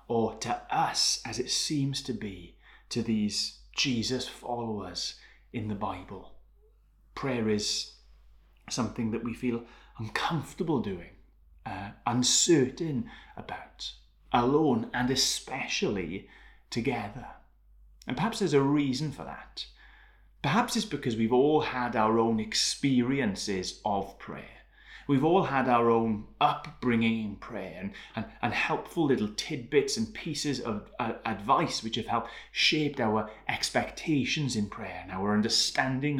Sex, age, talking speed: male, 30-49, 130 wpm